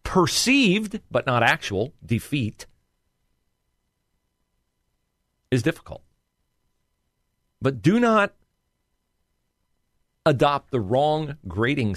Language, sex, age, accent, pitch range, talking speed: English, male, 40-59, American, 90-130 Hz, 70 wpm